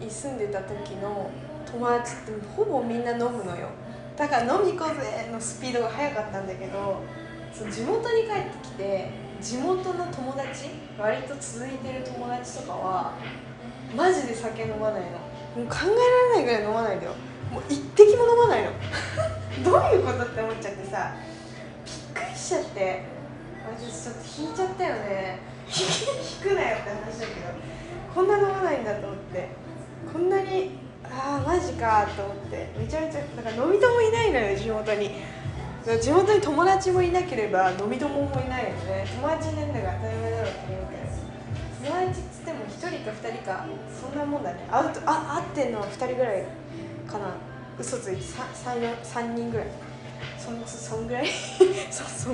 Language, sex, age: Japanese, female, 20-39